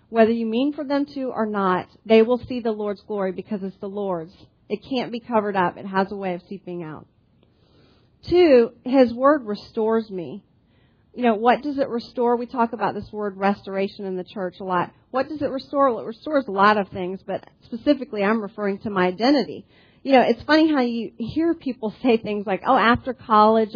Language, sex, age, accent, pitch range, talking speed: English, female, 40-59, American, 200-250 Hz, 210 wpm